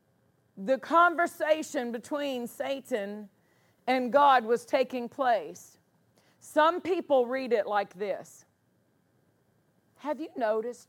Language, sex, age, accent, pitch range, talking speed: English, female, 50-69, American, 215-275 Hz, 100 wpm